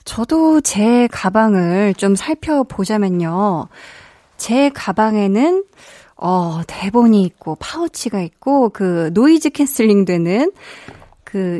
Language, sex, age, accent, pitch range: Korean, female, 20-39, native, 185-250 Hz